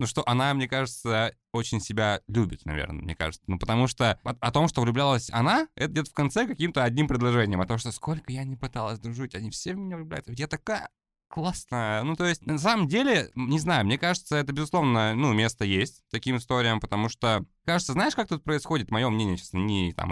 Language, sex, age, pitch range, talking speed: Russian, male, 20-39, 100-135 Hz, 210 wpm